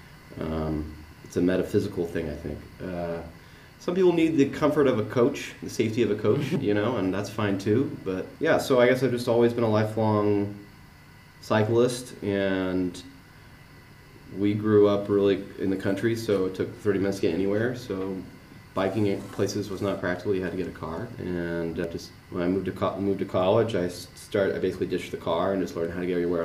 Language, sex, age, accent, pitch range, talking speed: English, male, 30-49, American, 90-110 Hz, 205 wpm